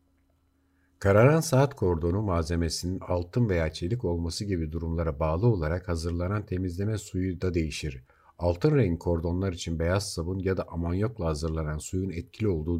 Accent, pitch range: native, 80-95 Hz